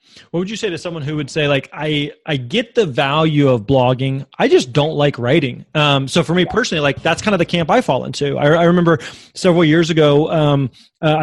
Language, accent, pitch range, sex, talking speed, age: English, American, 135-165 Hz, male, 235 wpm, 20-39